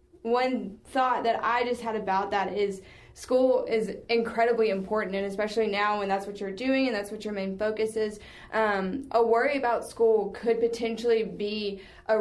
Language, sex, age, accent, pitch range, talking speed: English, female, 20-39, American, 205-230 Hz, 180 wpm